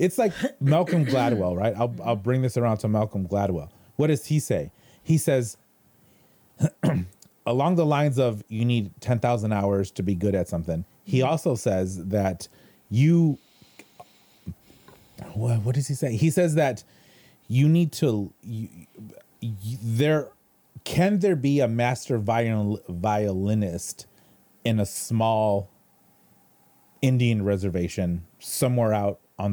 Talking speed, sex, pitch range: 135 wpm, male, 100-135 Hz